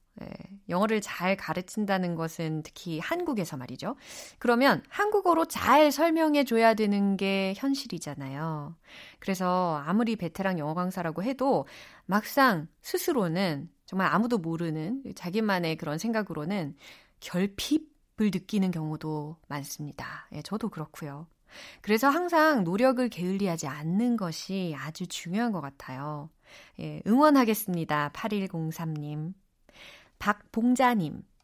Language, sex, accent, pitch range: Korean, female, native, 170-250 Hz